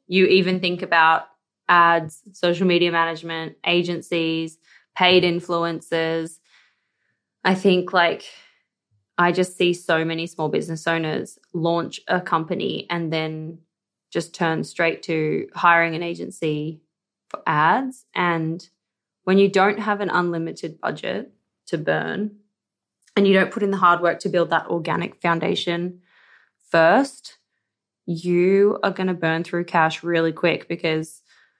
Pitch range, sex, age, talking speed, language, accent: 165-190 Hz, female, 20-39, 135 wpm, English, Australian